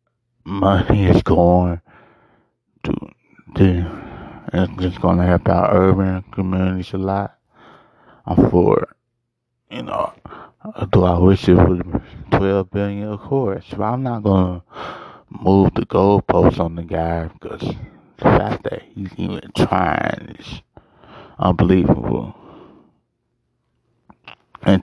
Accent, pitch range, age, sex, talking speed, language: American, 90-105 Hz, 20-39, male, 115 wpm, English